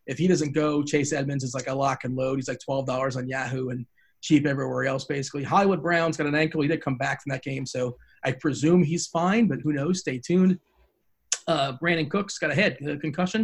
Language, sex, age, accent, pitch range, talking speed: English, male, 40-59, American, 135-175 Hz, 230 wpm